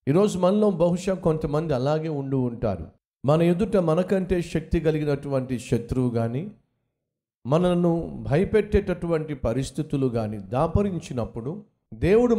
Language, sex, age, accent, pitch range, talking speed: Telugu, male, 50-69, native, 125-165 Hz, 95 wpm